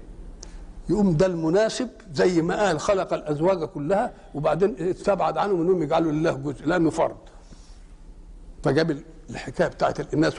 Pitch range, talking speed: 155-200 Hz, 125 wpm